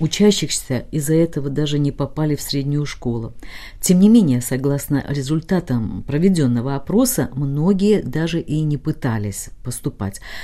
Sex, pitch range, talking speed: female, 130-160 Hz, 125 wpm